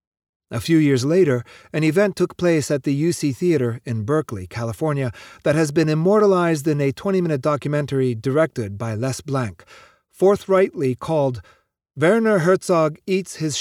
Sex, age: male, 40-59